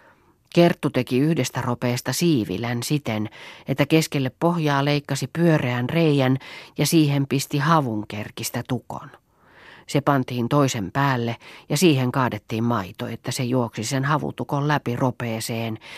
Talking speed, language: 120 wpm, Finnish